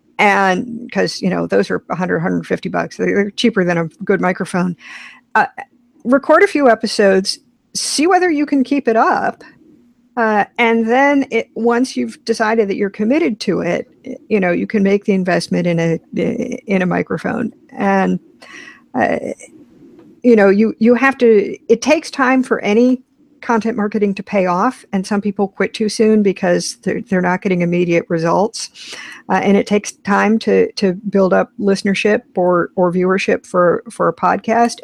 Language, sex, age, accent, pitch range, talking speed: English, female, 50-69, American, 185-255 Hz, 170 wpm